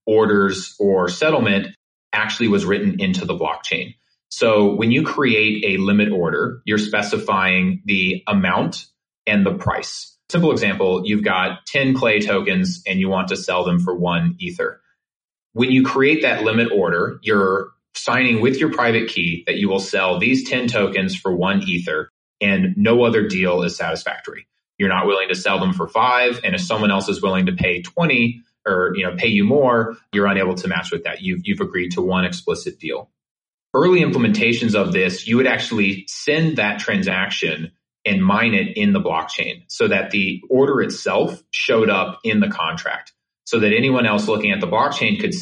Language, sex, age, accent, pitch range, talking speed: English, male, 30-49, American, 95-155 Hz, 180 wpm